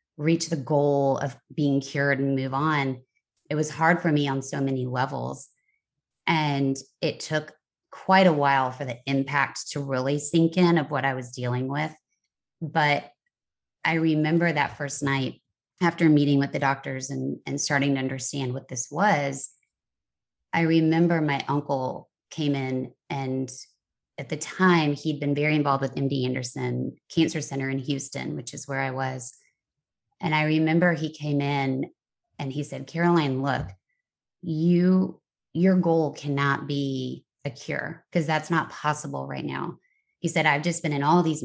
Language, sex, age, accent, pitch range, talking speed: English, female, 20-39, American, 135-160 Hz, 165 wpm